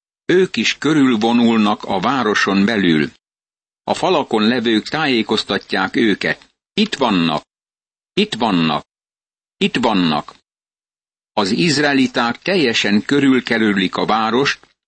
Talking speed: 95 wpm